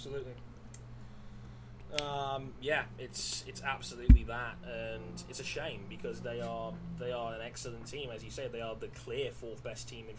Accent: British